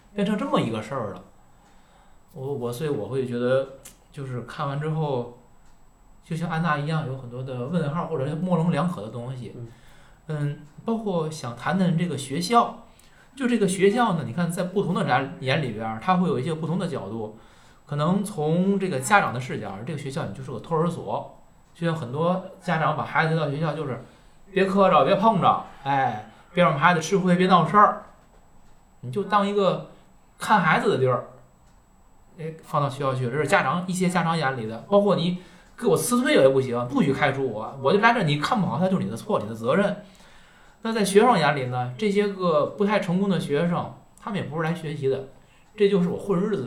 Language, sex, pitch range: Chinese, male, 130-185 Hz